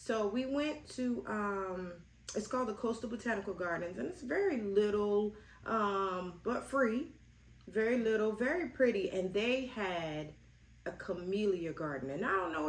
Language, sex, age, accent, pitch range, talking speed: English, female, 30-49, American, 170-220 Hz, 150 wpm